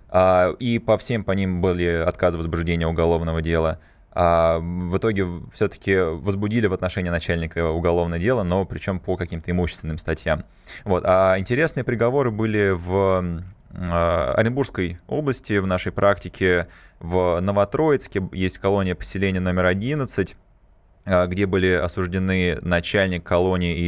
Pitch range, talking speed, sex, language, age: 90-105 Hz, 120 wpm, male, Russian, 20-39